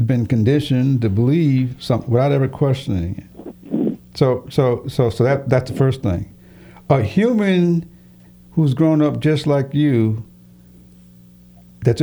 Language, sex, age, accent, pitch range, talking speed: English, male, 60-79, American, 95-130 Hz, 135 wpm